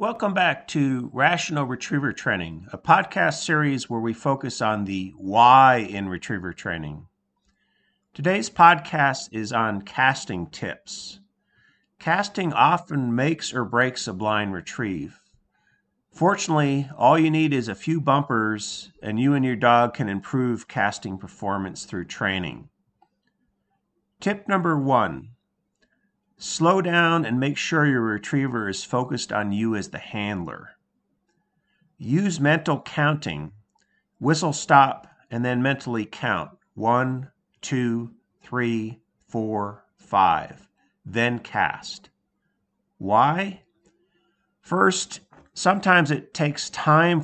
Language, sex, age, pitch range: English, male, 50-69, 110-160 Hz